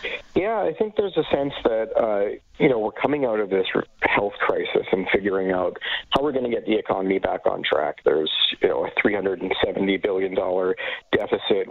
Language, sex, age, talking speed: English, male, 40-59, 190 wpm